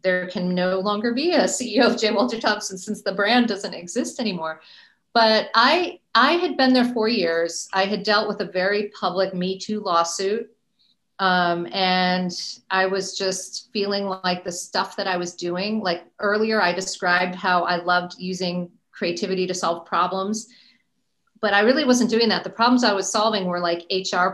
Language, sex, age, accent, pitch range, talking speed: English, female, 40-59, American, 185-220 Hz, 180 wpm